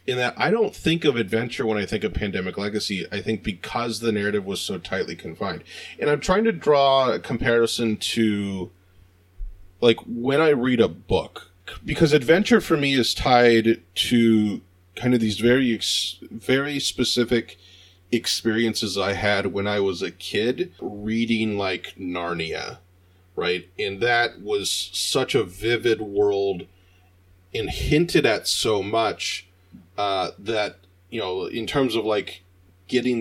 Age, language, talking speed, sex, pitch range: 30-49, English, 150 wpm, male, 90-125 Hz